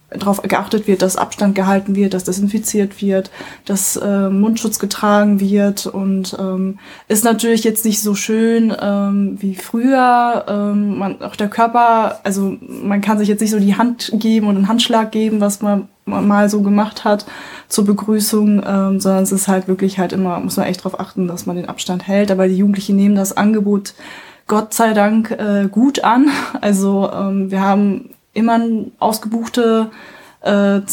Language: German